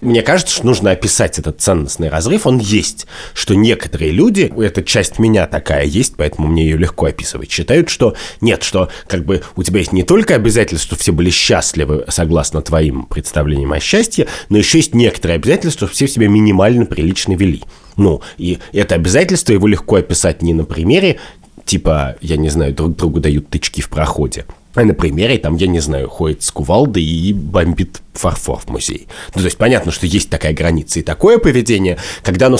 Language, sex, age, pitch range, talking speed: Russian, male, 30-49, 80-105 Hz, 190 wpm